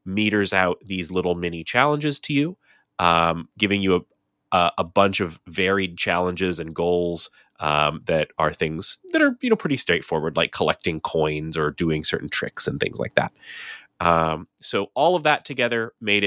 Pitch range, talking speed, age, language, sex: 85-115 Hz, 175 wpm, 30-49, English, male